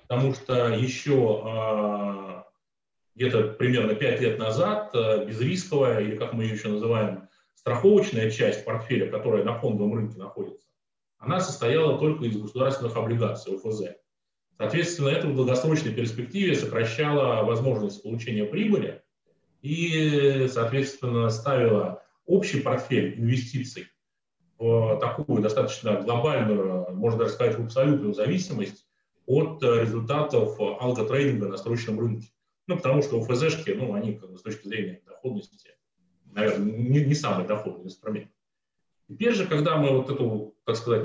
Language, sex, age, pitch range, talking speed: Russian, male, 30-49, 110-150 Hz, 125 wpm